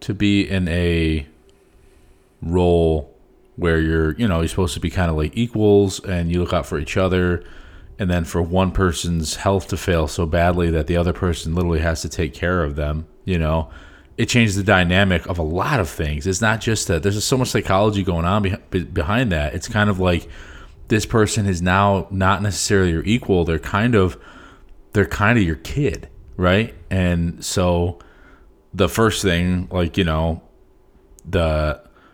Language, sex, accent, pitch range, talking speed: English, male, American, 80-95 Hz, 185 wpm